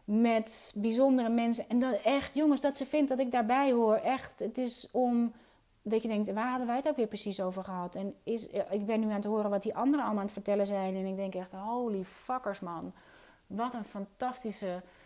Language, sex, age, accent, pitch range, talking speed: Dutch, female, 30-49, Dutch, 190-230 Hz, 225 wpm